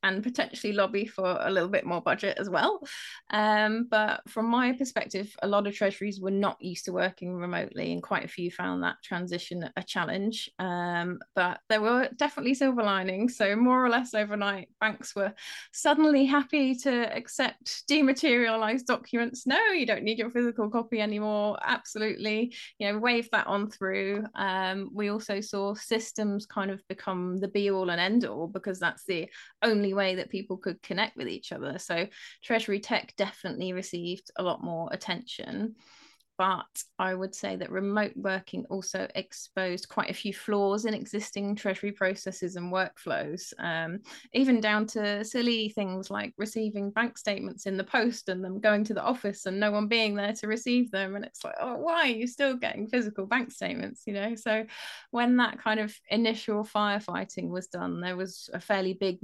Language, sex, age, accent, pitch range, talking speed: English, female, 20-39, British, 190-230 Hz, 180 wpm